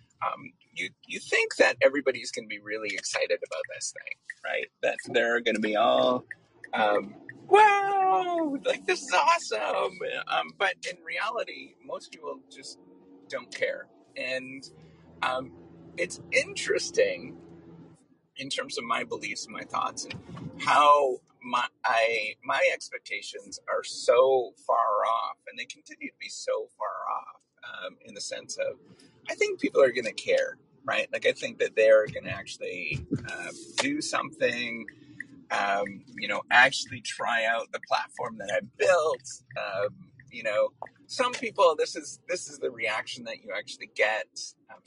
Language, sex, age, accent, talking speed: English, male, 30-49, American, 155 wpm